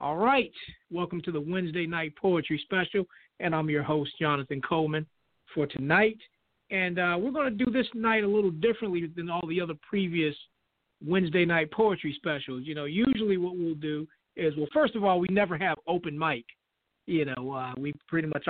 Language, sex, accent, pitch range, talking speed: English, male, American, 150-190 Hz, 190 wpm